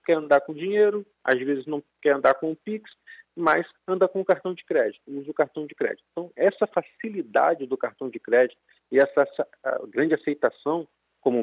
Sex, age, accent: male, 40-59, Brazilian